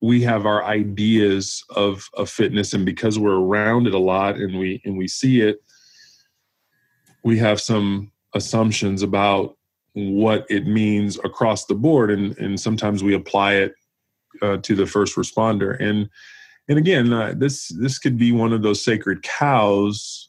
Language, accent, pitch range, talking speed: English, American, 100-115 Hz, 165 wpm